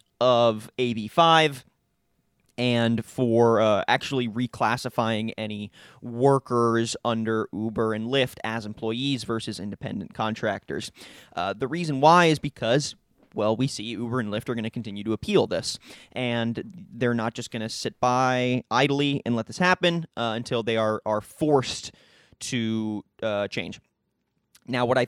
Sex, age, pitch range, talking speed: male, 20-39, 115-145 Hz, 150 wpm